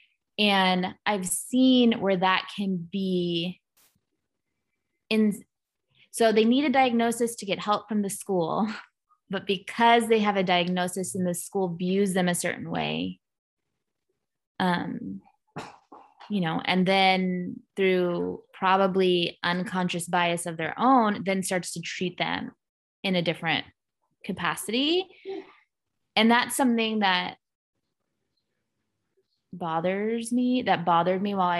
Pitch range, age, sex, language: 180-230 Hz, 20-39, female, English